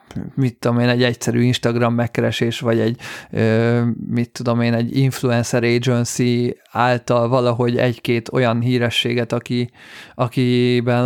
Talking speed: 115 wpm